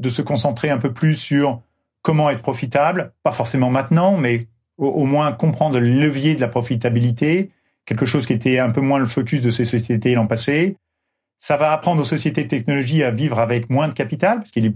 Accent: French